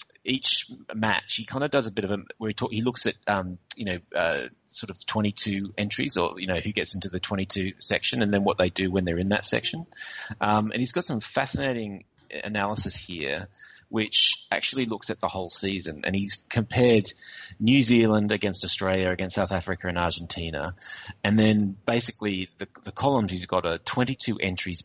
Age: 30-49